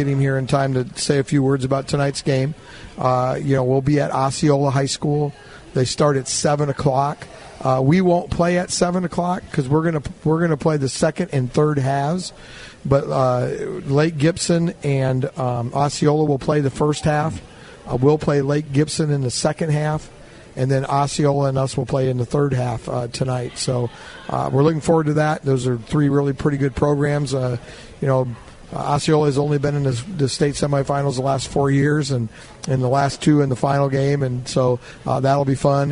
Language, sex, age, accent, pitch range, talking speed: English, male, 50-69, American, 130-150 Hz, 205 wpm